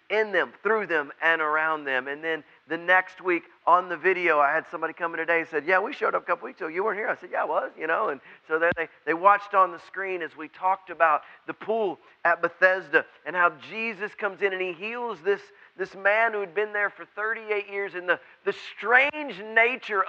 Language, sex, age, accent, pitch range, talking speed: English, male, 40-59, American, 190-260 Hz, 240 wpm